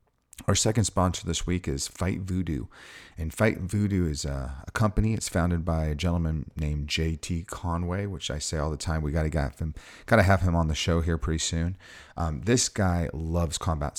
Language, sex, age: English, male, 30-49